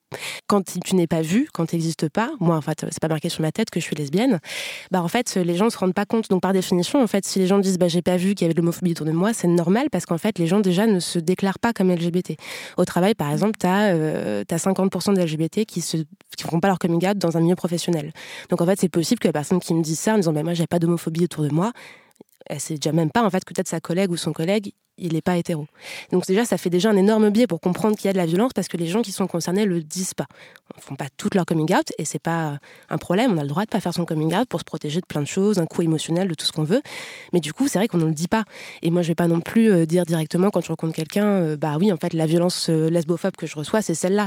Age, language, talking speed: 20-39, French, 320 wpm